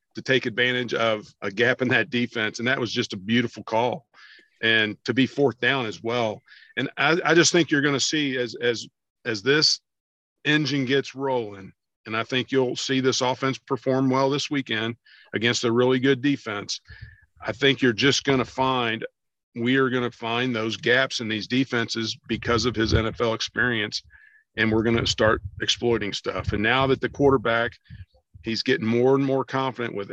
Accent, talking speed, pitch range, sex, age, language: American, 190 wpm, 110-130 Hz, male, 50-69, English